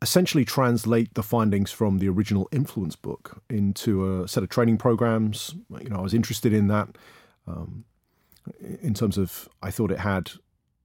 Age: 40-59